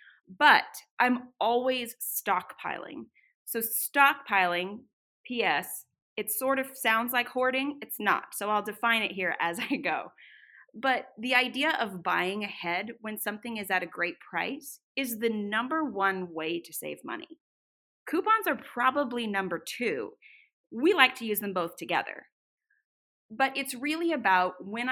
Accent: American